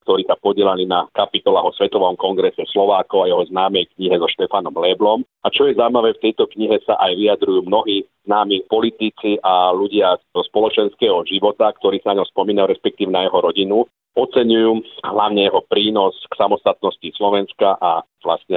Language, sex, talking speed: Slovak, male, 165 wpm